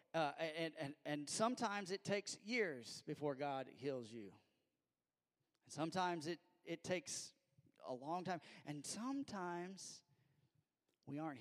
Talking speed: 125 wpm